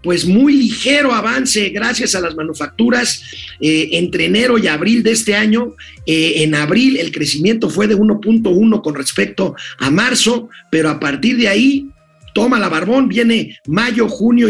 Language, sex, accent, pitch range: Spanish, male, Mexican, 160-230 Hz